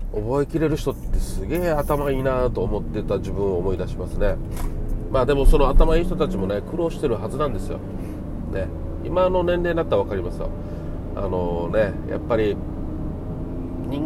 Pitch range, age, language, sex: 90-150 Hz, 40-59, Japanese, male